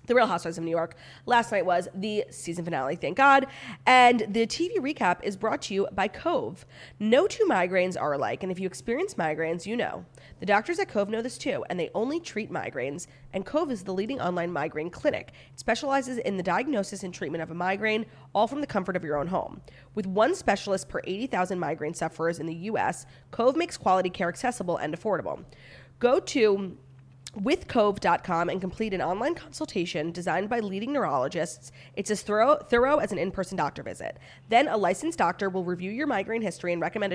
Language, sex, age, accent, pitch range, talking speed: English, female, 30-49, American, 175-235 Hz, 200 wpm